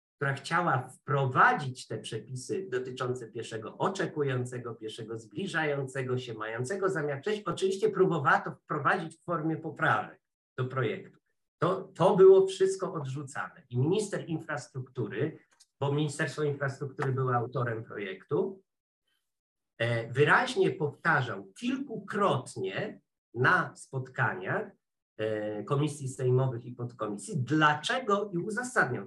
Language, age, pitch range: Polish, 50-69, 130-190 Hz